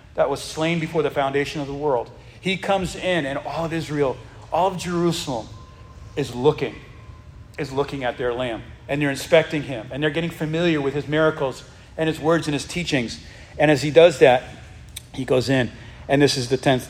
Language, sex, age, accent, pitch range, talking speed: English, male, 40-59, American, 115-140 Hz, 200 wpm